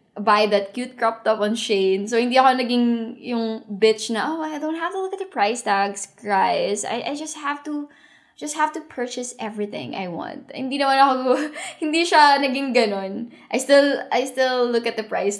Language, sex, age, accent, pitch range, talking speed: English, female, 10-29, Filipino, 210-265 Hz, 205 wpm